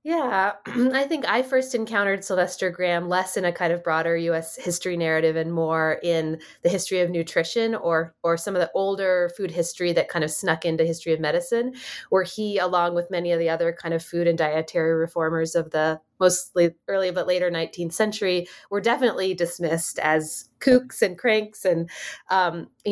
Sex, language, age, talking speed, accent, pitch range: female, English, 20-39, 185 wpm, American, 170-210 Hz